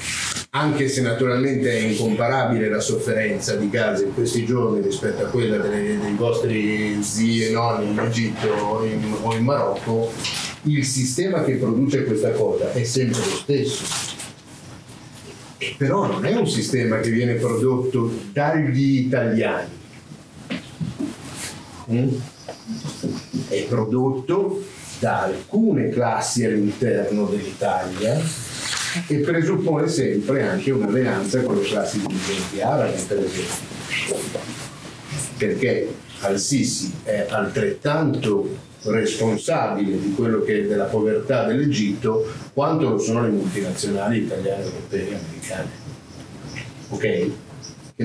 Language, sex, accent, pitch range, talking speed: Italian, male, native, 110-140 Hz, 110 wpm